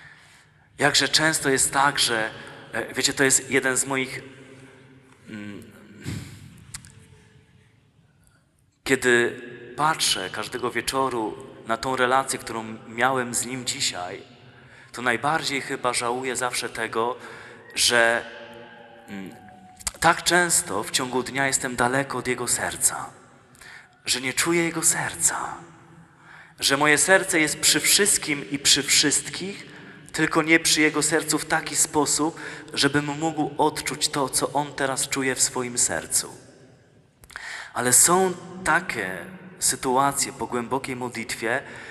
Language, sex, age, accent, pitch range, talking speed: Polish, male, 30-49, native, 125-150 Hz, 115 wpm